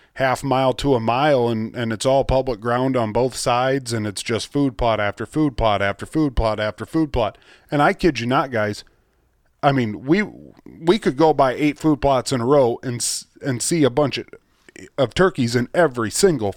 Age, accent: 30-49, American